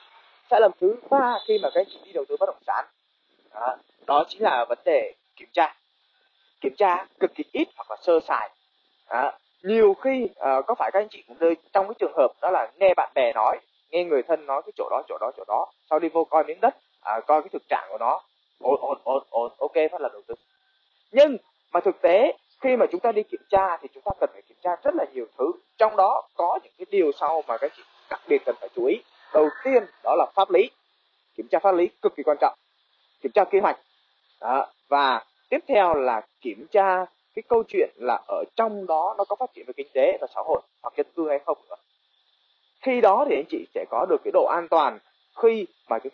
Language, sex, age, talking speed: Vietnamese, male, 20-39, 240 wpm